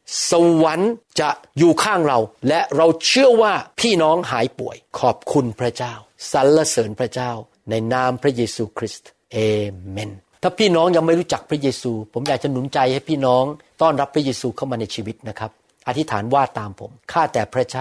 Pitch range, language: 120-160 Hz, Thai